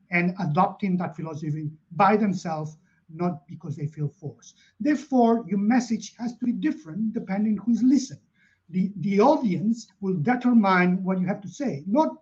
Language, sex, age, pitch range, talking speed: English, male, 50-69, 175-230 Hz, 155 wpm